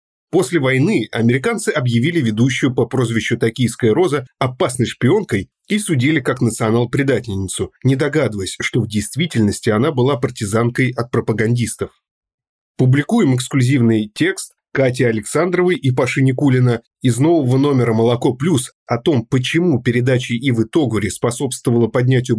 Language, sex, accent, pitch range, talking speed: Russian, male, native, 110-140 Hz, 125 wpm